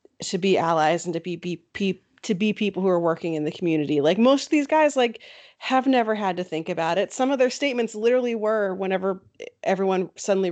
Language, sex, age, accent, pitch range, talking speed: English, female, 30-49, American, 180-215 Hz, 220 wpm